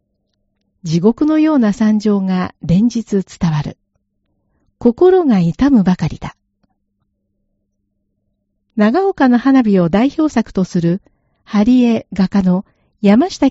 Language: Japanese